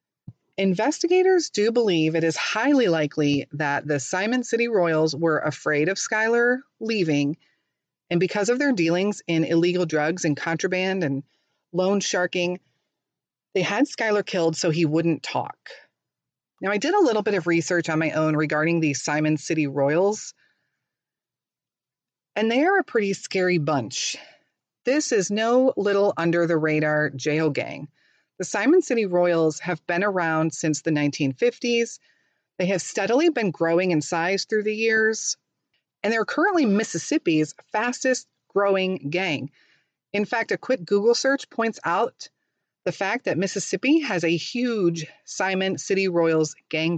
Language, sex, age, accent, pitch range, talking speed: English, female, 30-49, American, 155-225 Hz, 145 wpm